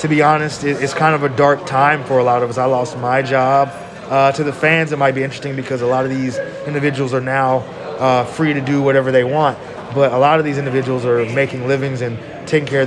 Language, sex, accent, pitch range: English, male, American, 125-150 Hz